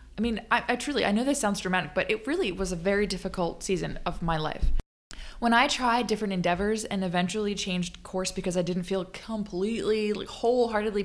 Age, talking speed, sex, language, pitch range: 20-39, 195 wpm, female, English, 185-245 Hz